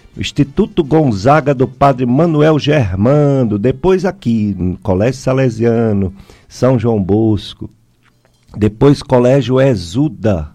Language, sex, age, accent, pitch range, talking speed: Portuguese, male, 50-69, Brazilian, 100-135 Hz, 100 wpm